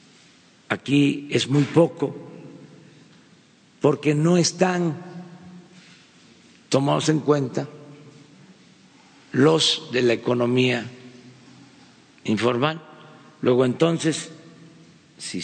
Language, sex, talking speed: Spanish, male, 70 wpm